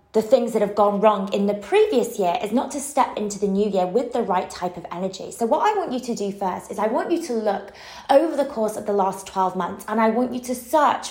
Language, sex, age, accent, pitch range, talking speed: English, female, 20-39, British, 205-265 Hz, 280 wpm